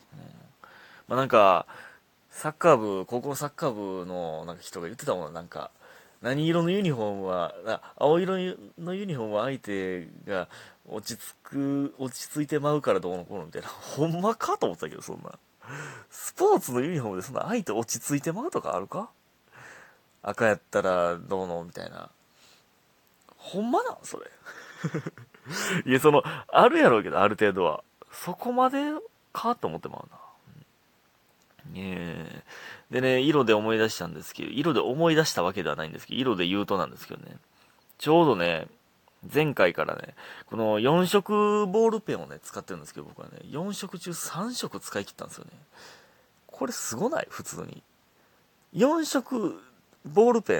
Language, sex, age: Japanese, male, 30-49